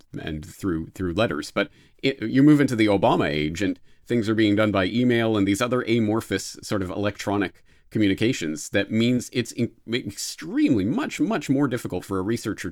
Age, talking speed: 40-59, 185 wpm